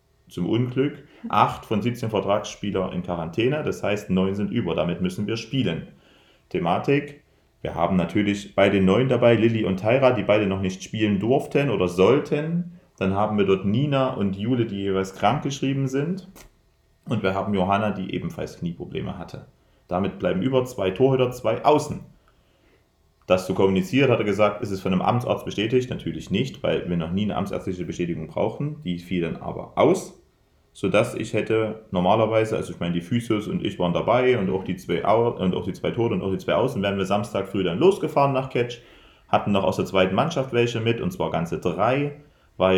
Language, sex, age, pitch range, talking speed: German, male, 40-59, 95-125 Hz, 195 wpm